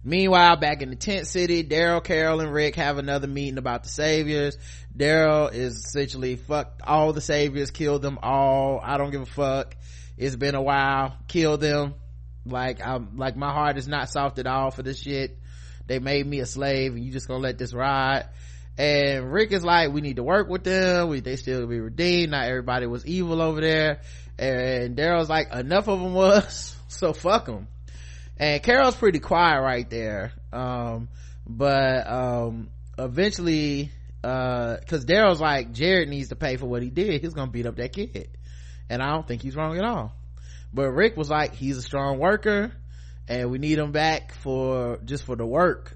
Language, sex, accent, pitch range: English, male, American, 120-155 Hz